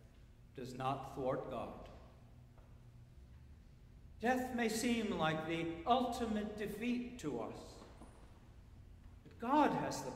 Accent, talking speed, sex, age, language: American, 100 wpm, male, 60-79, English